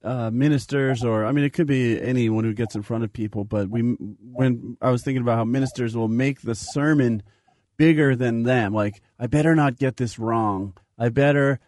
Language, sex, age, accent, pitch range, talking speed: English, male, 30-49, American, 115-155 Hz, 205 wpm